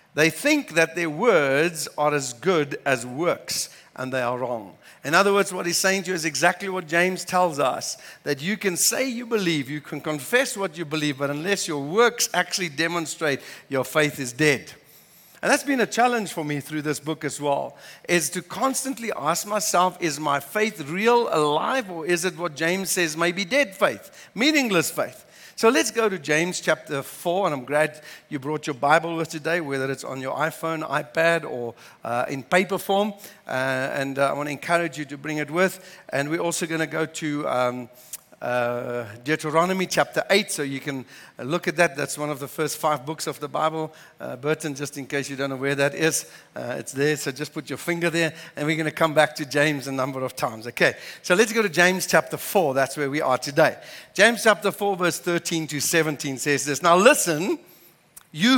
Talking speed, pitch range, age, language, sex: 210 wpm, 145-185 Hz, 60-79, English, male